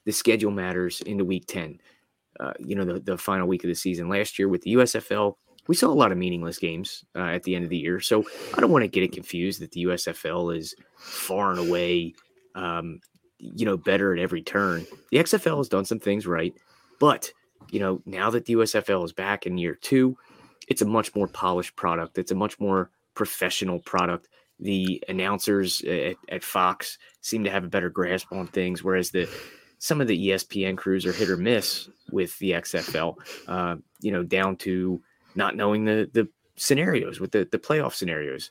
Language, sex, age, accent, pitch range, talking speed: English, male, 20-39, American, 90-110 Hz, 205 wpm